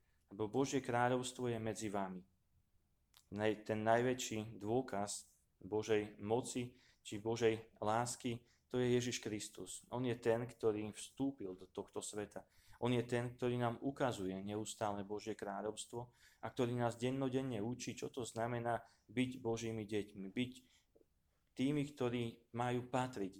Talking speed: 130 wpm